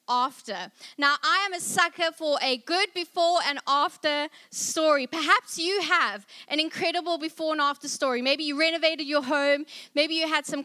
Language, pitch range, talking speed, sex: English, 260-320 Hz, 175 wpm, female